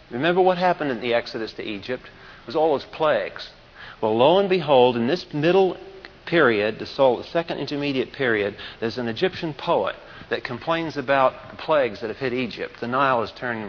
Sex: male